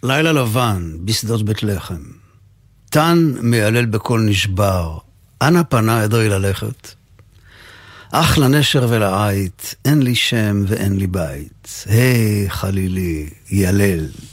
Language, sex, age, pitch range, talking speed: Hebrew, male, 50-69, 100-130 Hz, 110 wpm